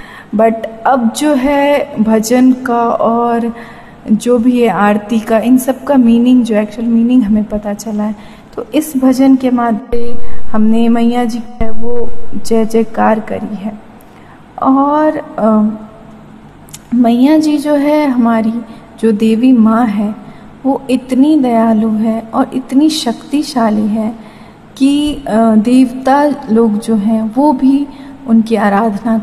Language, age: Hindi, 30-49